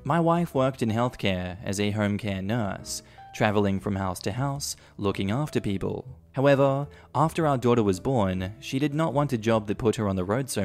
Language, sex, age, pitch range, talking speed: English, male, 20-39, 100-125 Hz, 210 wpm